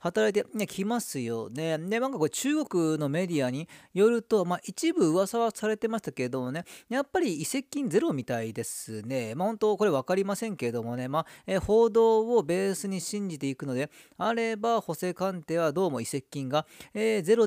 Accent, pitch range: native, 150-220 Hz